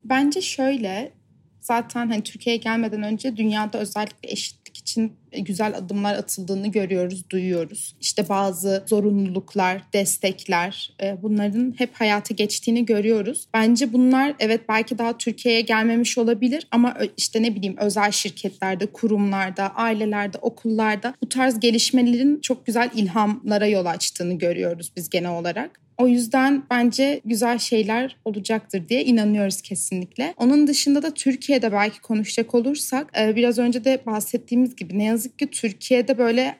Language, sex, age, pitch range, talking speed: Turkish, female, 30-49, 200-245 Hz, 130 wpm